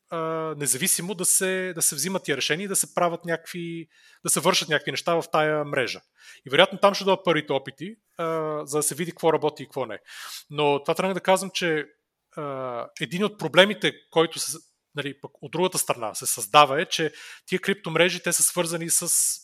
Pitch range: 145-180 Hz